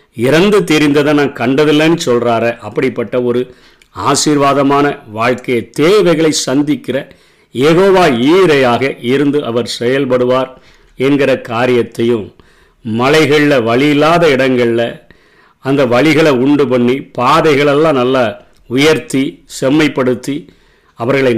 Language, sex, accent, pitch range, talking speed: Tamil, male, native, 125-150 Hz, 85 wpm